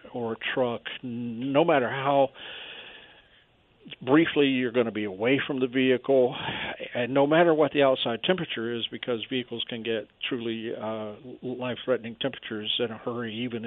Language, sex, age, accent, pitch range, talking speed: English, male, 50-69, American, 115-130 Hz, 155 wpm